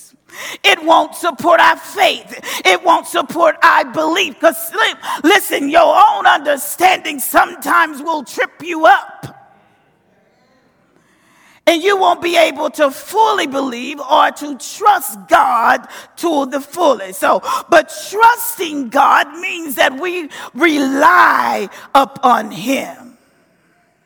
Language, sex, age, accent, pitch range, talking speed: English, female, 40-59, American, 290-360 Hz, 110 wpm